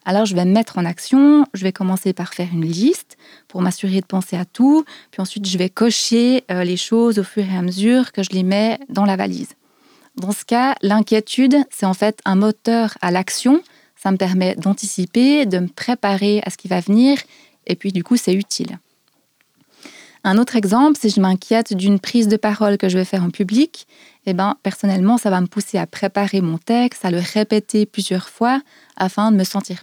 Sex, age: female, 20-39